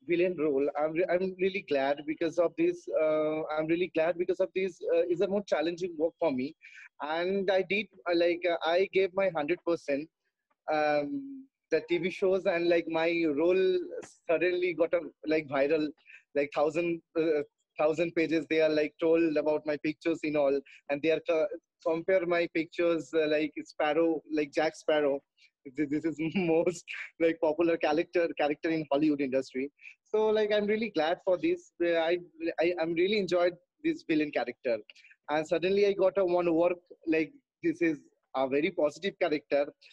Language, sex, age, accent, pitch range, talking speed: Spanish, male, 20-39, Indian, 150-185 Hz, 175 wpm